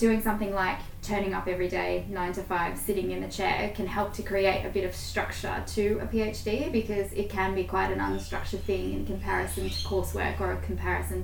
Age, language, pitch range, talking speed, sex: 10-29, English, 180-210 Hz, 215 wpm, female